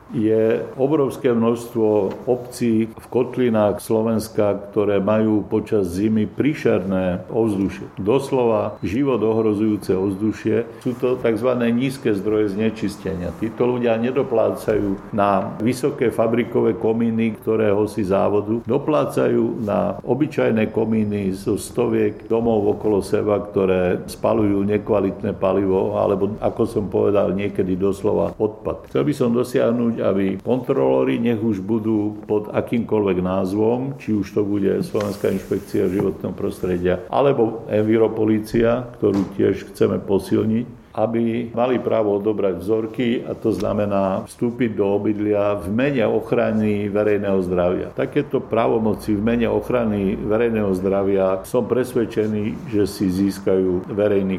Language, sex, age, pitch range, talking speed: Slovak, male, 50-69, 100-115 Hz, 120 wpm